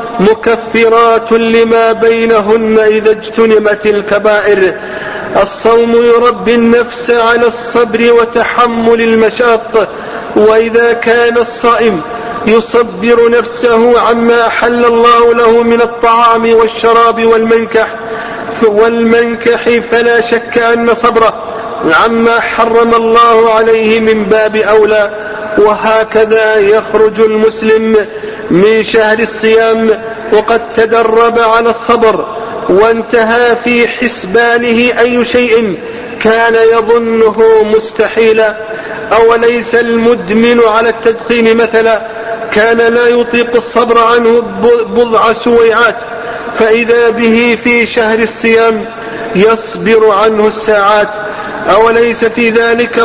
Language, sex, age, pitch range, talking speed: Arabic, male, 40-59, 220-235 Hz, 90 wpm